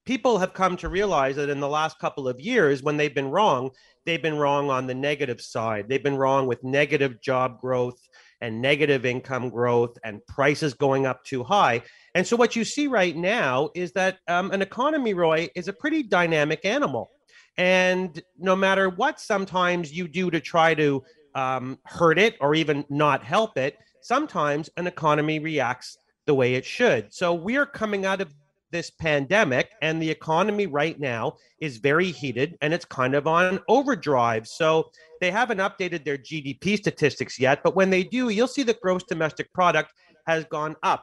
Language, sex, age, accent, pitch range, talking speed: English, male, 30-49, American, 140-180 Hz, 185 wpm